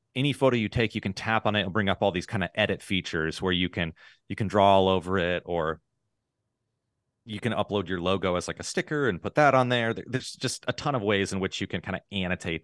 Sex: male